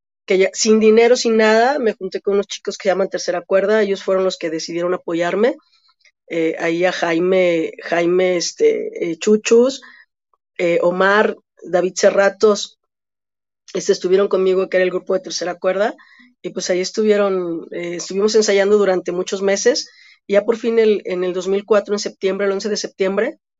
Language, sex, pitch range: Spanish, female, 180-215 Hz